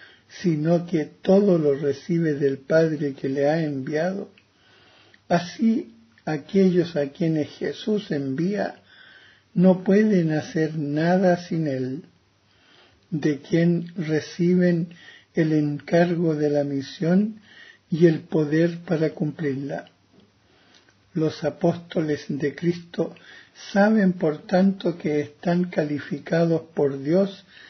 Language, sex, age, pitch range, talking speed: Spanish, male, 60-79, 145-180 Hz, 105 wpm